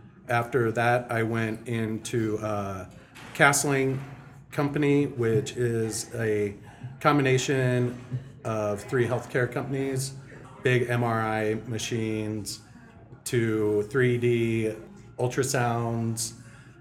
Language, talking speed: English, 80 wpm